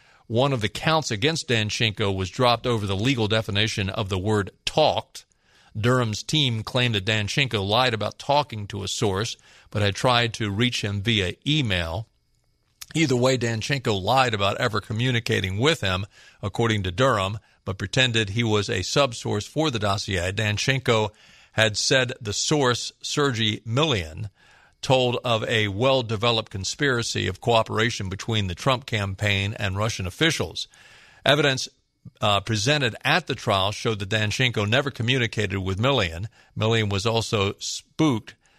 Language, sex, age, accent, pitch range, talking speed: English, male, 40-59, American, 100-125 Hz, 145 wpm